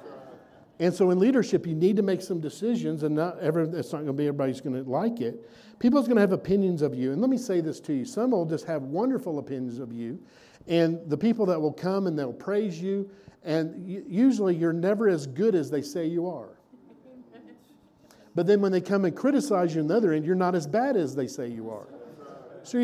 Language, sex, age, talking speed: English, male, 50-69, 225 wpm